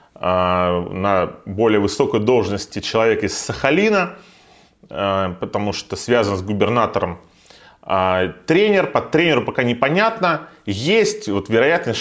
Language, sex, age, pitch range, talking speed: Russian, male, 20-39, 95-140 Hz, 95 wpm